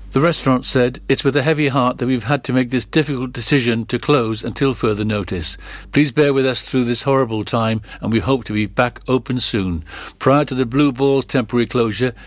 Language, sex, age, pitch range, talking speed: English, male, 60-79, 115-135 Hz, 215 wpm